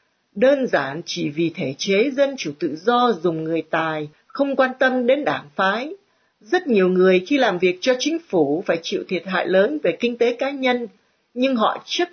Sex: female